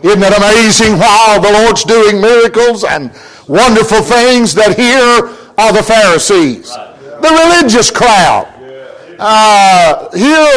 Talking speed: 125 wpm